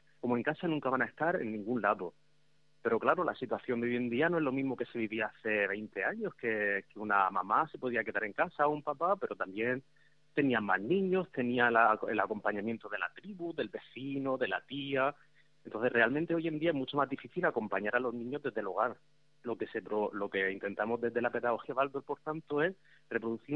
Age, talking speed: 30-49, 215 wpm